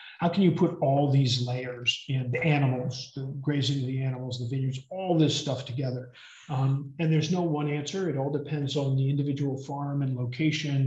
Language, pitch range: English, 130-155 Hz